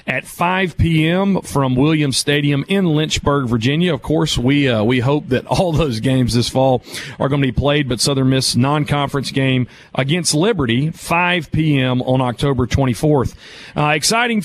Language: English